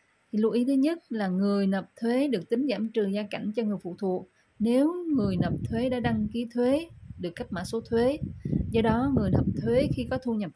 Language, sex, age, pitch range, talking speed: Vietnamese, female, 20-39, 190-235 Hz, 235 wpm